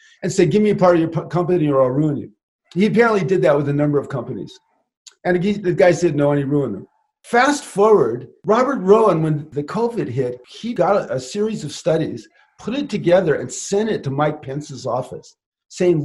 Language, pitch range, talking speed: English, 150-210 Hz, 215 wpm